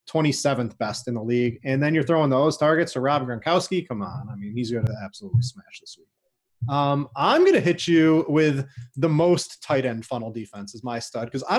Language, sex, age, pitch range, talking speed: English, male, 20-39, 130-175 Hz, 225 wpm